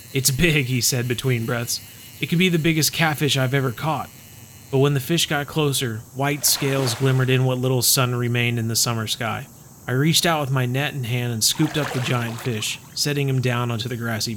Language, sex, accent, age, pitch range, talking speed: English, male, American, 30-49, 115-150 Hz, 220 wpm